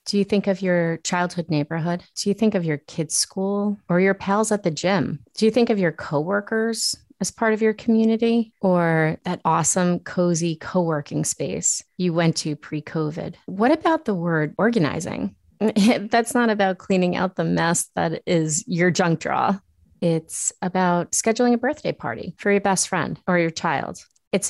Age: 30-49